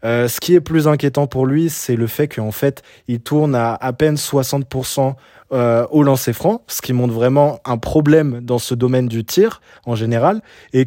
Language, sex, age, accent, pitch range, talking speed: French, male, 20-39, French, 120-150 Hz, 205 wpm